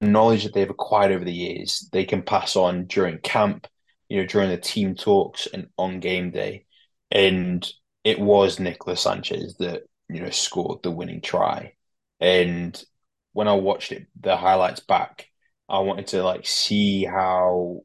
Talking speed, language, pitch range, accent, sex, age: 165 wpm, English, 90-100 Hz, British, male, 20-39